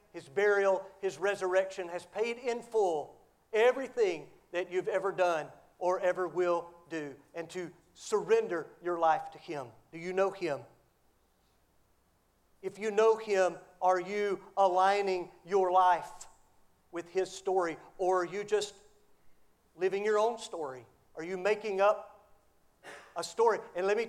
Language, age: English, 40-59